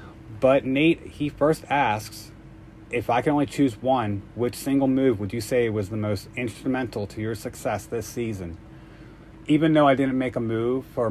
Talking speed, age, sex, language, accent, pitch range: 185 wpm, 30-49, male, English, American, 110-135 Hz